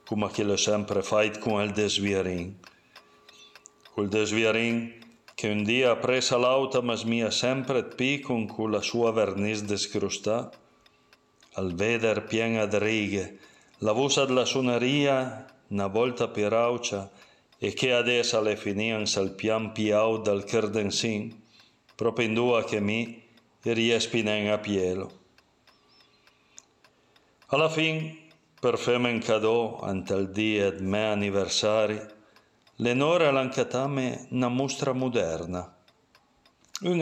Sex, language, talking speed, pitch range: male, Italian, 120 wpm, 105-125 Hz